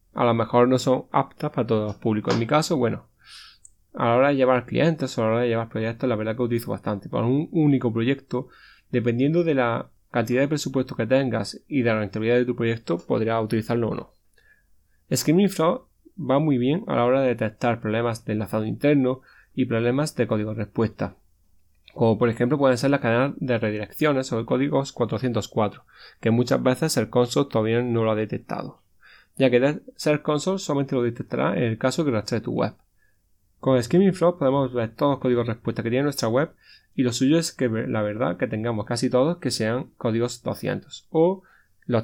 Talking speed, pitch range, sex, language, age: 205 wpm, 110-135 Hz, male, Spanish, 20-39